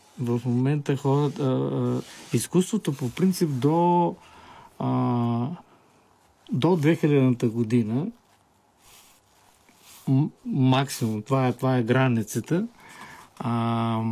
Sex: male